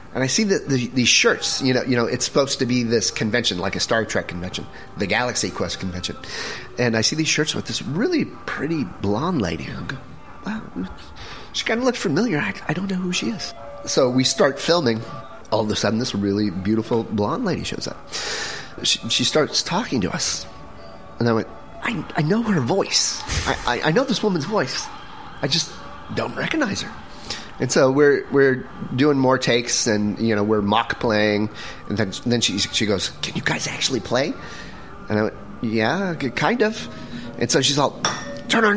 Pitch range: 110-150 Hz